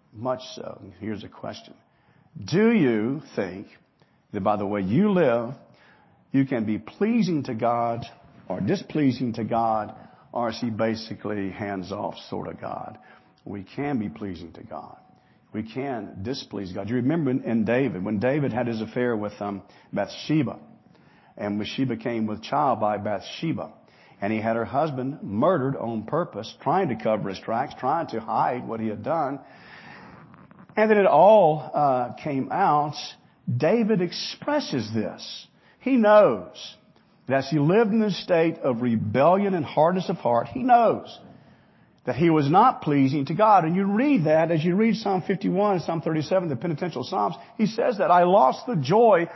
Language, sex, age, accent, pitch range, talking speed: English, male, 50-69, American, 115-185 Hz, 170 wpm